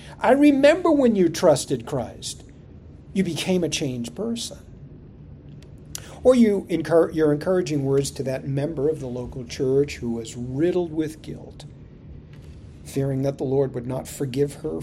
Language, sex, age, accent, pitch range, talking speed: English, male, 50-69, American, 130-220 Hz, 150 wpm